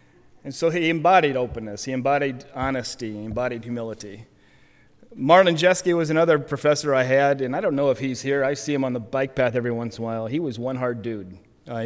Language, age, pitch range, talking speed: English, 30-49, 115-145 Hz, 220 wpm